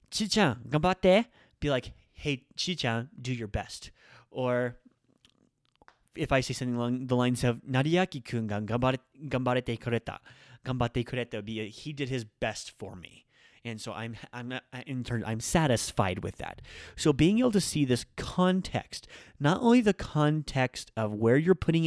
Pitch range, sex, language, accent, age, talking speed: 115-145 Hz, male, English, American, 30-49, 160 wpm